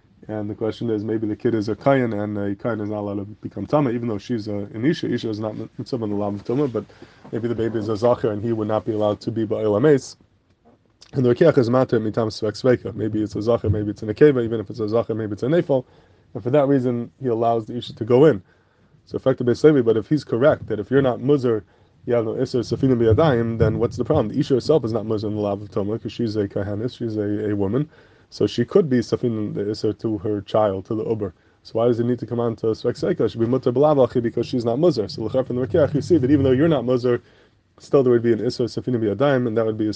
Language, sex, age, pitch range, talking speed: English, male, 20-39, 110-130 Hz, 265 wpm